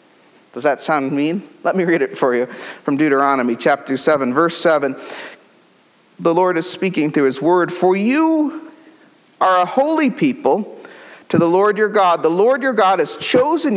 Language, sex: English, male